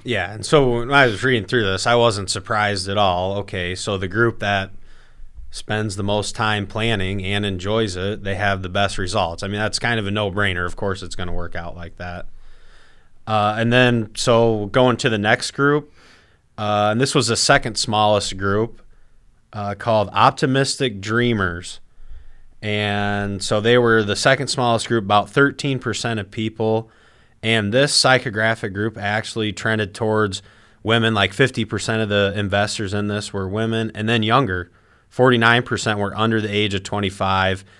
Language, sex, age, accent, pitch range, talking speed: English, male, 30-49, American, 100-115 Hz, 175 wpm